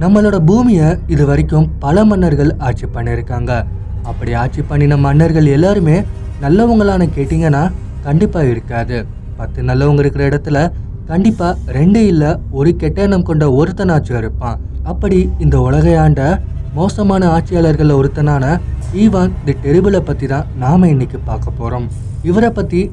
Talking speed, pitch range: 125 wpm, 130-175 Hz